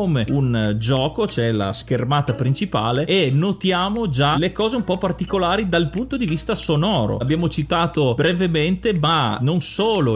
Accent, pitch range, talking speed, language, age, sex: native, 130-170 Hz, 150 wpm, Italian, 30-49, male